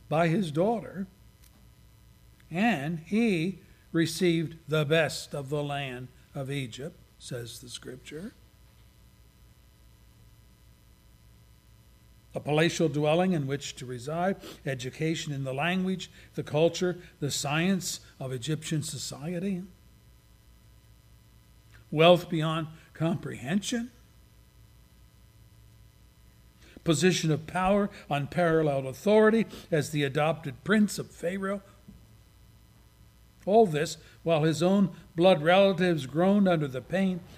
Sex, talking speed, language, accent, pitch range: male, 95 wpm, English, American, 140-180 Hz